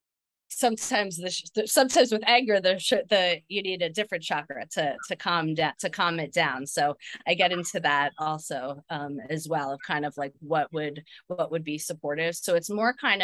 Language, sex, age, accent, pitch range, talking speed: English, female, 20-39, American, 150-205 Hz, 195 wpm